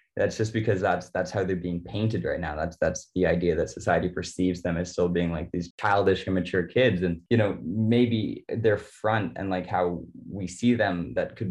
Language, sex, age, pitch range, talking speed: English, male, 20-39, 90-100 Hz, 215 wpm